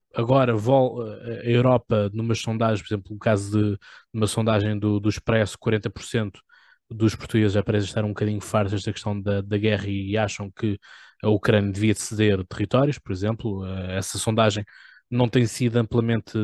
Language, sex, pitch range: Portuguese, male, 105-115 Hz